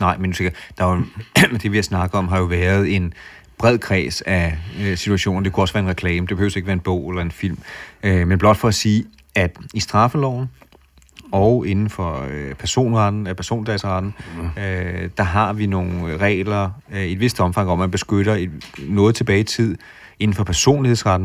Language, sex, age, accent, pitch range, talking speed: Danish, male, 30-49, native, 90-105 Hz, 170 wpm